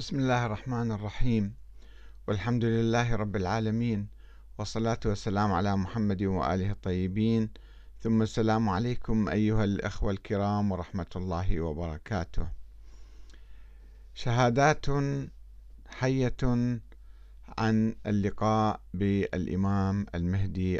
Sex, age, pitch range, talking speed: male, 50-69, 90-115 Hz, 85 wpm